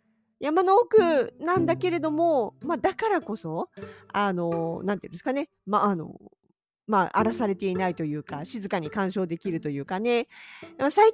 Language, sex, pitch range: Japanese, female, 185-295 Hz